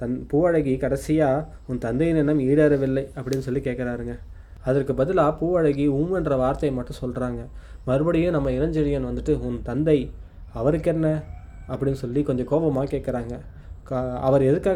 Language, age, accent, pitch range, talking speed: Tamil, 20-39, native, 130-150 Hz, 140 wpm